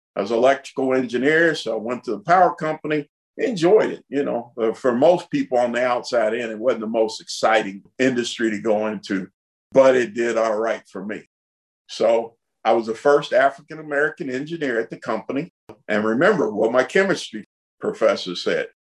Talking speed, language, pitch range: 180 wpm, English, 110-145 Hz